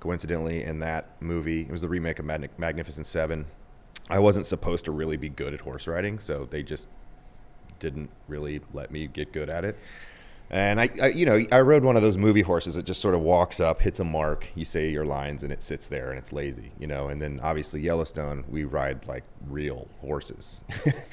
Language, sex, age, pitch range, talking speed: English, male, 30-49, 75-90 Hz, 215 wpm